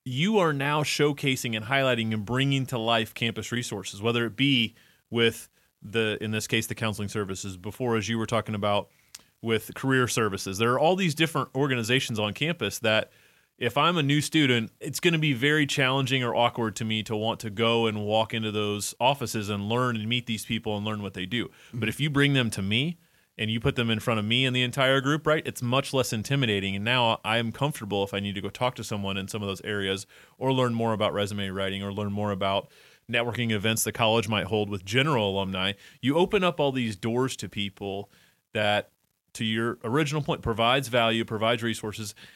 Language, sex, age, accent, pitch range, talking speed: English, male, 30-49, American, 105-130 Hz, 215 wpm